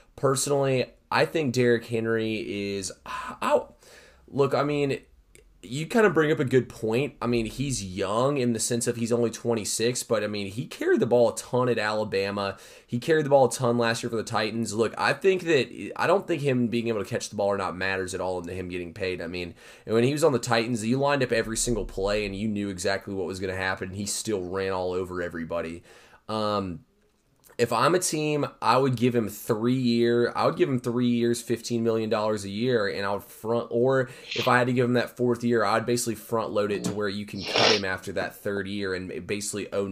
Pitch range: 100-120 Hz